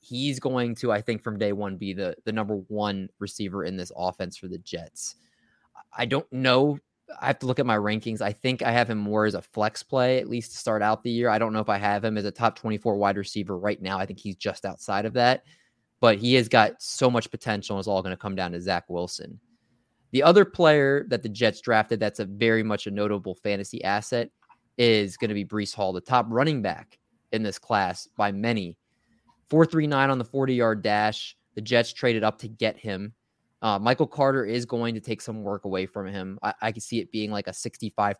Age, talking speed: 20-39, 235 wpm